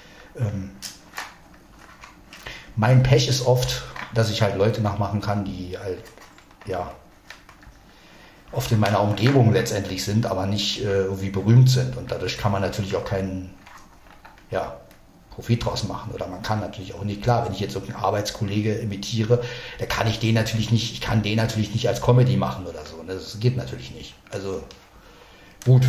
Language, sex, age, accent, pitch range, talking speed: German, male, 50-69, German, 100-125 Hz, 165 wpm